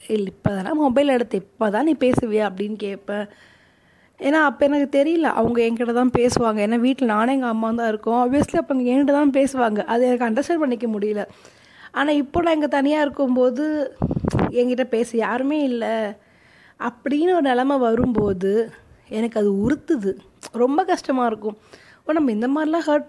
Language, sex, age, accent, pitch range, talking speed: Tamil, female, 20-39, native, 210-275 Hz, 150 wpm